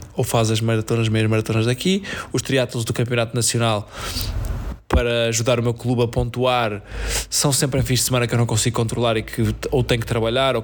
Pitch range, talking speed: 110-135 Hz, 210 wpm